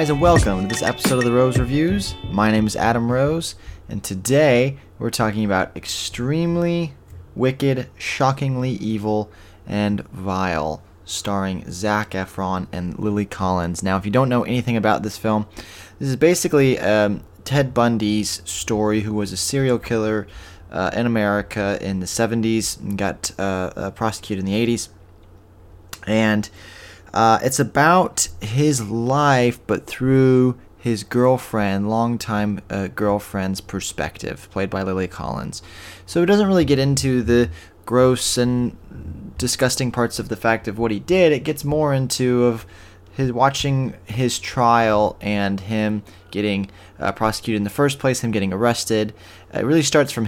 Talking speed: 150 wpm